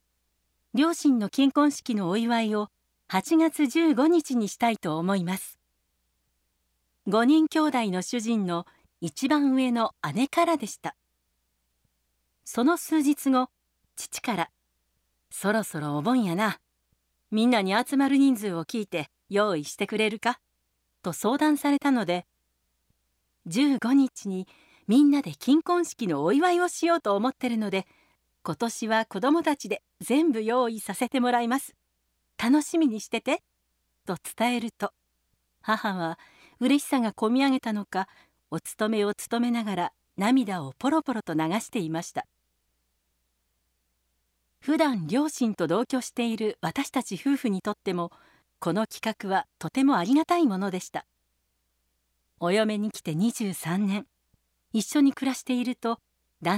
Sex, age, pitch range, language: female, 40-59, 170-265 Hz, Japanese